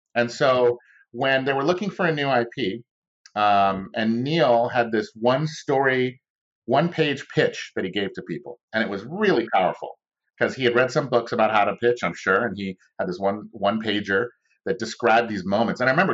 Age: 40-59